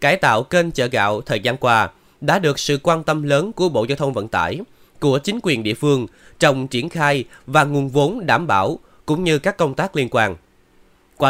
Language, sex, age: Vietnamese, male, 20-39